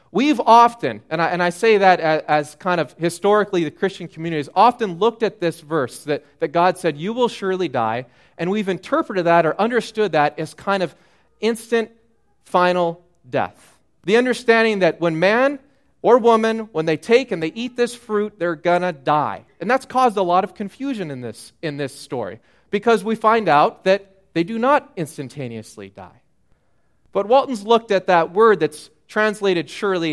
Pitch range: 160-220 Hz